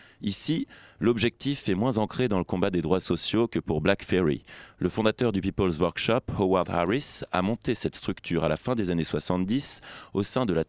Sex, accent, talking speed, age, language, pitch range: male, French, 200 wpm, 30-49, French, 85-110 Hz